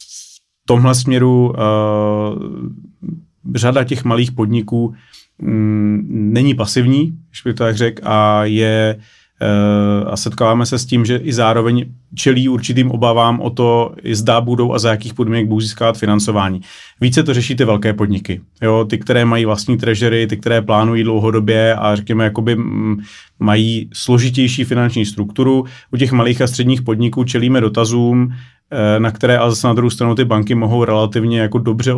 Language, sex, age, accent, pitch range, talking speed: Czech, male, 30-49, native, 105-120 Hz, 150 wpm